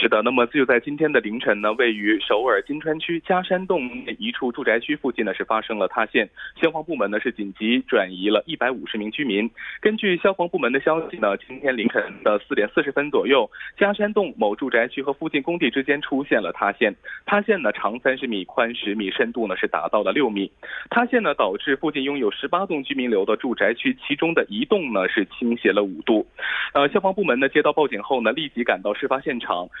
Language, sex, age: Korean, male, 20-39